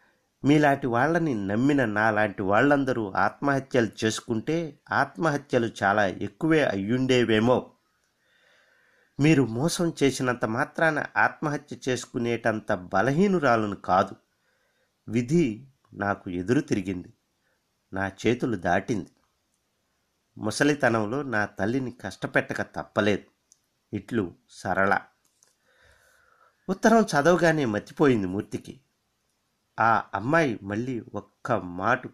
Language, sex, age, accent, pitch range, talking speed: Telugu, male, 50-69, native, 100-135 Hz, 80 wpm